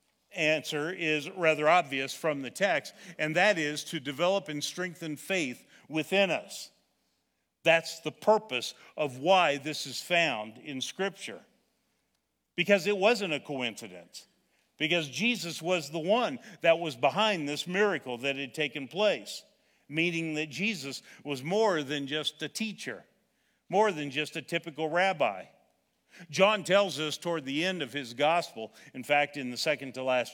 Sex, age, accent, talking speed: male, 50-69, American, 150 wpm